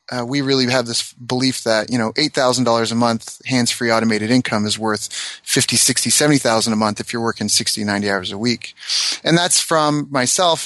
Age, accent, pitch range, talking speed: 30-49, American, 110-135 Hz, 225 wpm